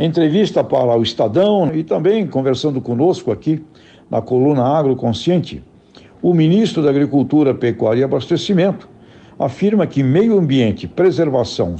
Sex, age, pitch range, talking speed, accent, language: male, 60-79, 125-180 Hz, 125 wpm, Brazilian, Portuguese